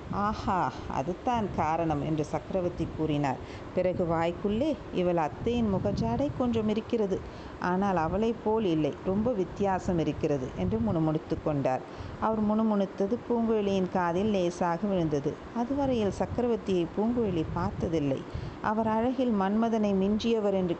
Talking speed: 115 wpm